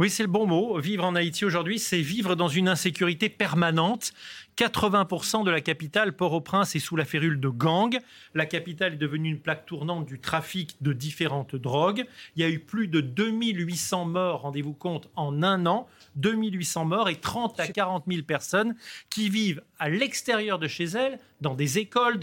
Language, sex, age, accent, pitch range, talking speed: French, male, 40-59, French, 150-195 Hz, 185 wpm